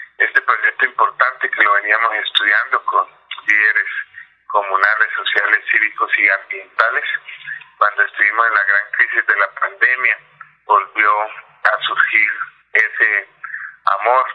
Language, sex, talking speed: Spanish, male, 115 wpm